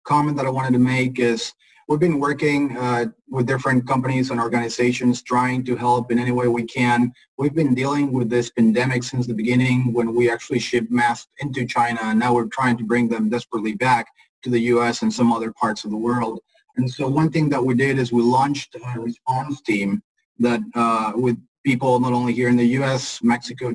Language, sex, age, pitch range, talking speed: English, male, 30-49, 115-130 Hz, 210 wpm